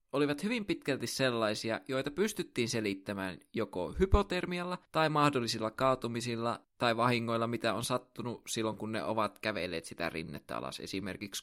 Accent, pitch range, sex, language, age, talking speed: native, 105-130 Hz, male, Finnish, 20-39, 135 wpm